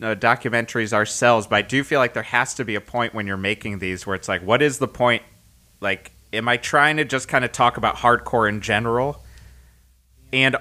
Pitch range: 100-125 Hz